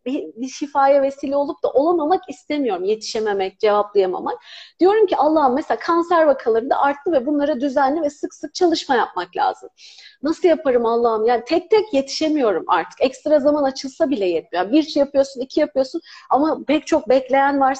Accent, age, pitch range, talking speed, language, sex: native, 40-59, 260-345 Hz, 170 wpm, Turkish, female